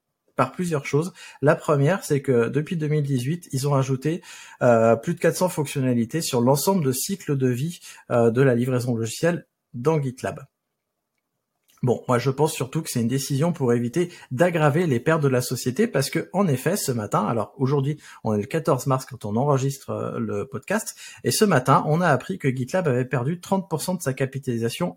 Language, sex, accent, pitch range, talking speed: French, male, French, 125-165 Hz, 190 wpm